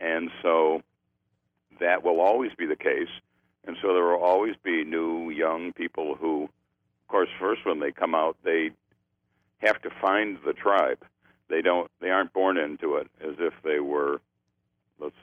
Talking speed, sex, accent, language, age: 170 wpm, male, American, English, 60-79